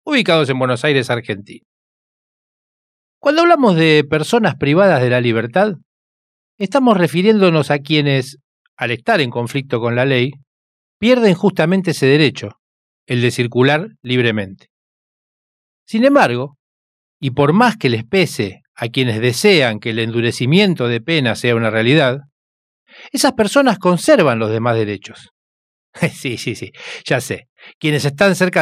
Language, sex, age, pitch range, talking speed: Spanish, male, 40-59, 120-175 Hz, 135 wpm